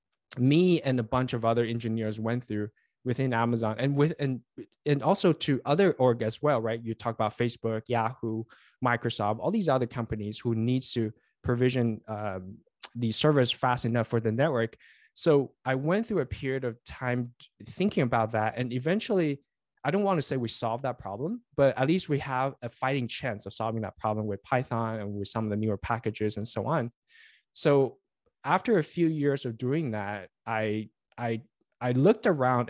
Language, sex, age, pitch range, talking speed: English, male, 20-39, 110-140 Hz, 190 wpm